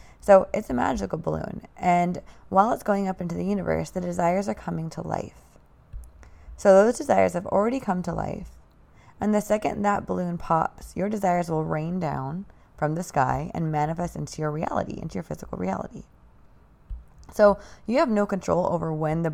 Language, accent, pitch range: English, American, 165-205 Hz